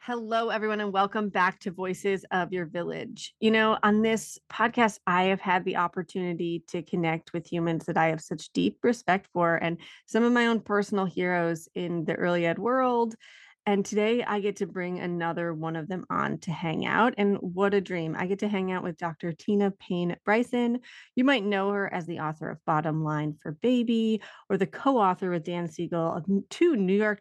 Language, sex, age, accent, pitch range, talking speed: English, female, 30-49, American, 170-215 Hz, 205 wpm